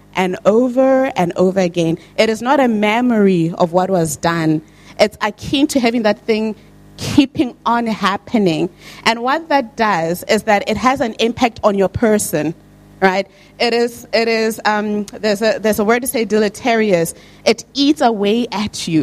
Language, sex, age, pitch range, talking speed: English, female, 30-49, 195-245 Hz, 175 wpm